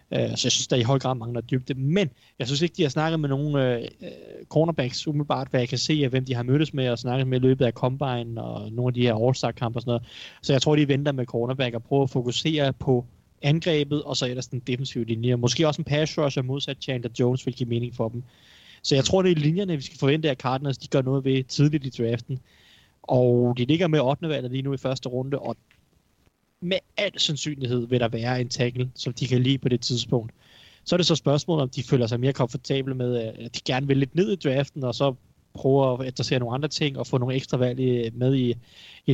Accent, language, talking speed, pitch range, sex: native, Danish, 245 wpm, 125-145 Hz, male